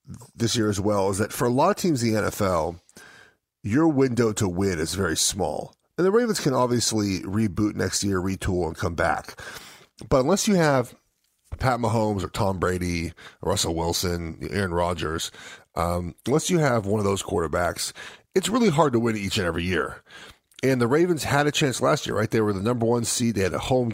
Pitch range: 105-140 Hz